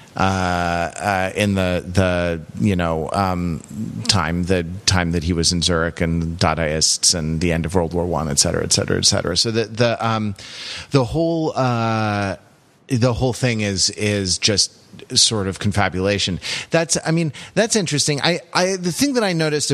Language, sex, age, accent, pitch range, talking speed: English, male, 30-49, American, 100-145 Hz, 180 wpm